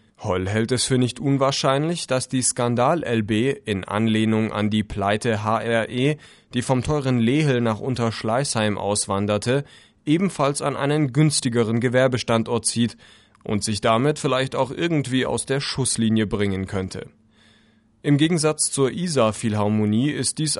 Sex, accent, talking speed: male, German, 130 wpm